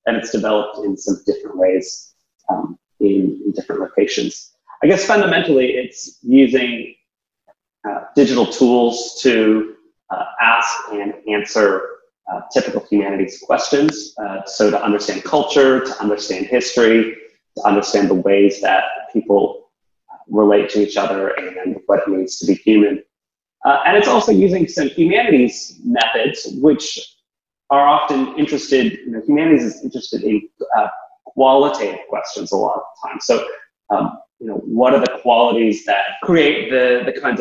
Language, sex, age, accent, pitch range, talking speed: English, male, 30-49, American, 105-150 Hz, 150 wpm